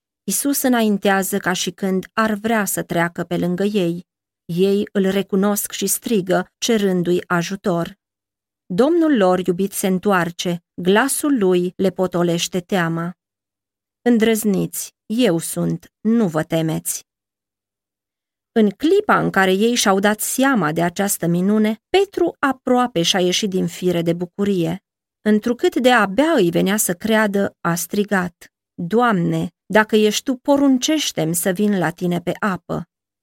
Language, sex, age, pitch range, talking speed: Romanian, female, 30-49, 170-220 Hz, 135 wpm